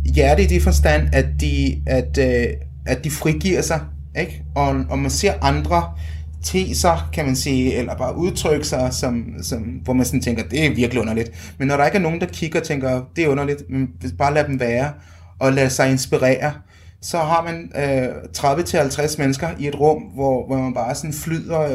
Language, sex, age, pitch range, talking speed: Danish, male, 30-49, 120-145 Hz, 195 wpm